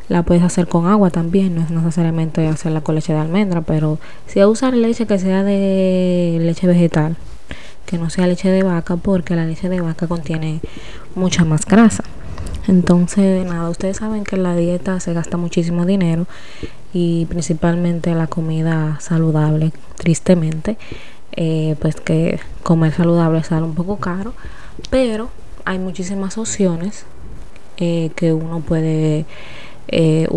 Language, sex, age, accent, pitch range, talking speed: Spanish, female, 20-39, American, 160-185 Hz, 150 wpm